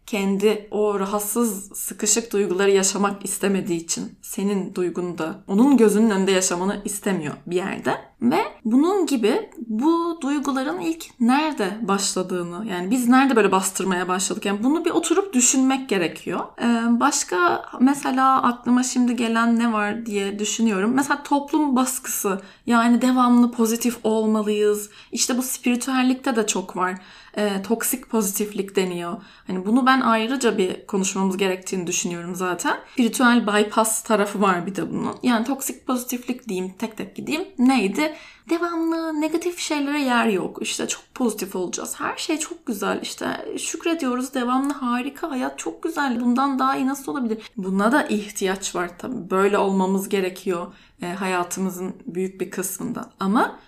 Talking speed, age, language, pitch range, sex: 140 wpm, 10-29, Turkish, 195-265 Hz, female